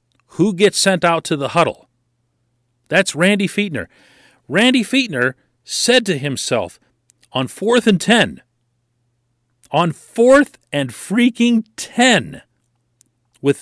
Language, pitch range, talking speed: English, 120-175 Hz, 110 wpm